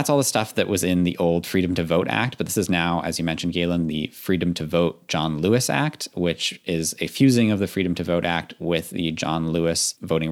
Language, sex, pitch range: English, male, 80-95 Hz